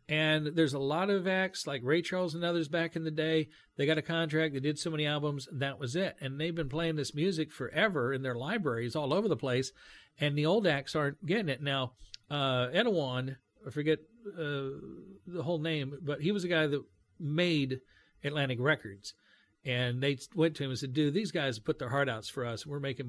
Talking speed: 220 wpm